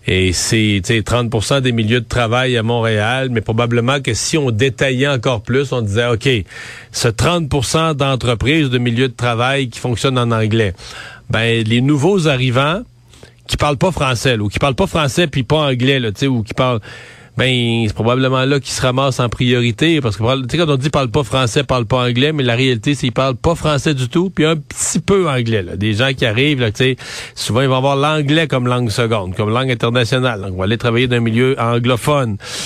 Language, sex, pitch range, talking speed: French, male, 110-135 Hz, 215 wpm